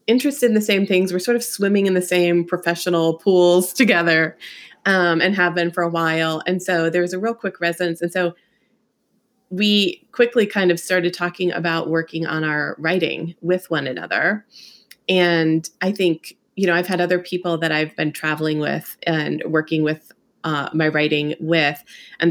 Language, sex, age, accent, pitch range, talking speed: English, female, 20-39, American, 160-185 Hz, 185 wpm